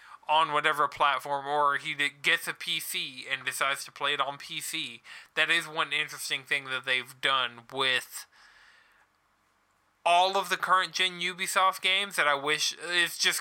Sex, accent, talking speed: male, American, 160 wpm